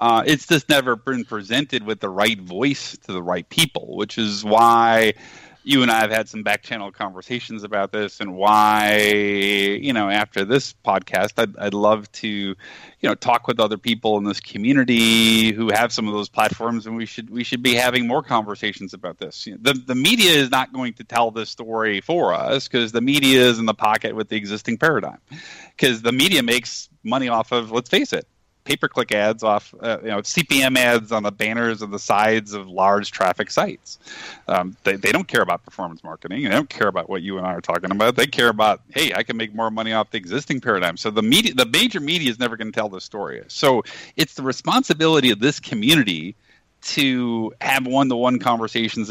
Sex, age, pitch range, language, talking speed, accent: male, 30-49, 105-125 Hz, English, 210 wpm, American